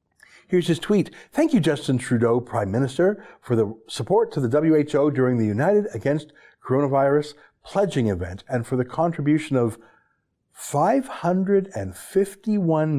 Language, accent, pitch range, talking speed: English, American, 120-185 Hz, 130 wpm